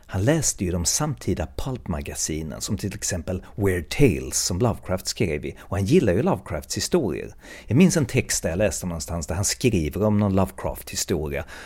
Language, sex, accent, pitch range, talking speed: Swedish, male, native, 85-110 Hz, 180 wpm